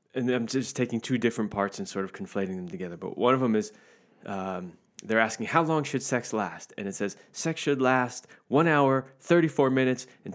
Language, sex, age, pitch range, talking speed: English, male, 20-39, 110-135 Hz, 215 wpm